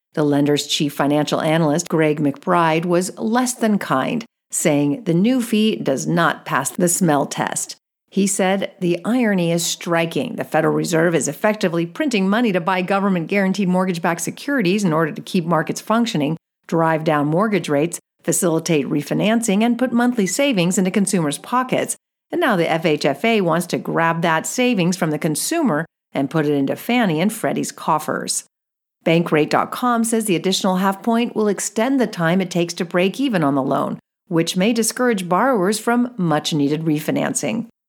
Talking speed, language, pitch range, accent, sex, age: 160 wpm, English, 160-220 Hz, American, female, 50-69